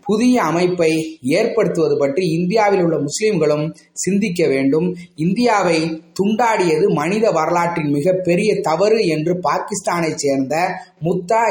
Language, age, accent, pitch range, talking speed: Tamil, 30-49, native, 155-195 Hz, 105 wpm